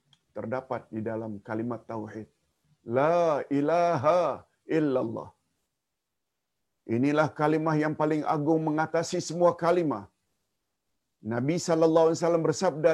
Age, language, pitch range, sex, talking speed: 50-69, Malayalam, 140-170 Hz, male, 95 wpm